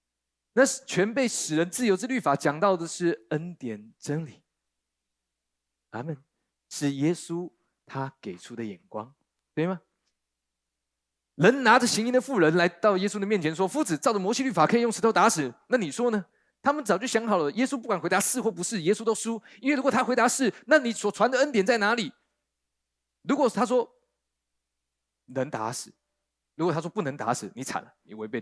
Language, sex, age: Chinese, male, 30-49